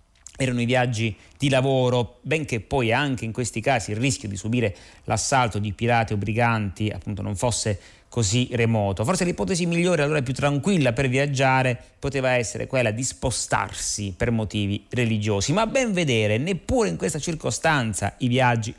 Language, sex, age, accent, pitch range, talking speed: Italian, male, 30-49, native, 105-130 Hz, 160 wpm